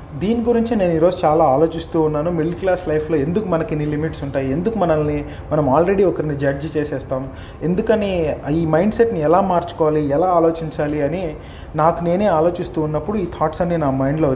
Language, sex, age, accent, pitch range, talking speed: Telugu, male, 30-49, native, 145-190 Hz, 165 wpm